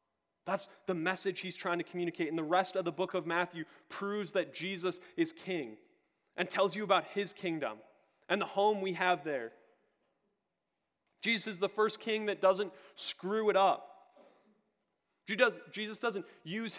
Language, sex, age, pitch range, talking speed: English, male, 20-39, 175-210 Hz, 160 wpm